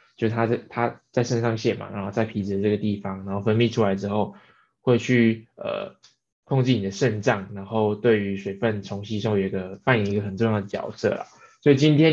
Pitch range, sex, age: 100-115 Hz, male, 20-39